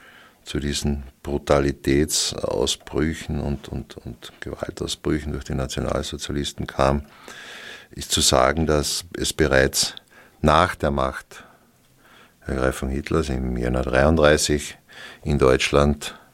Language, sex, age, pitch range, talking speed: German, male, 60-79, 65-75 Hz, 105 wpm